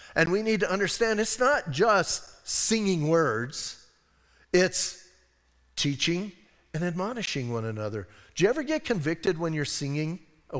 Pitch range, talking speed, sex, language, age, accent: 140-195 Hz, 140 wpm, male, English, 50-69, American